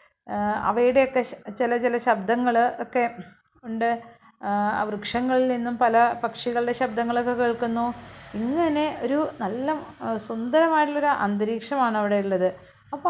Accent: native